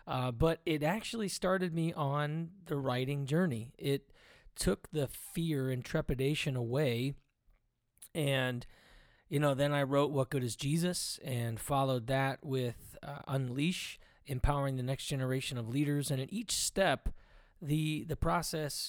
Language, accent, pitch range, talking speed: English, American, 125-155 Hz, 145 wpm